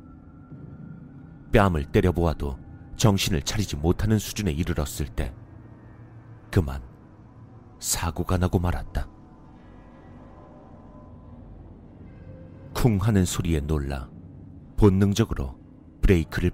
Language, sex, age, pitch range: Korean, male, 40-59, 80-105 Hz